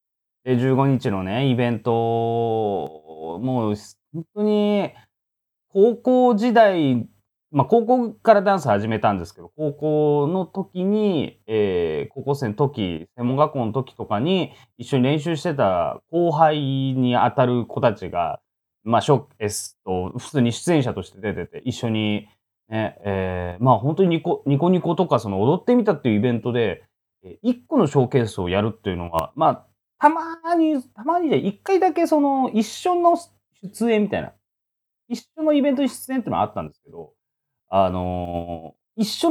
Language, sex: Japanese, male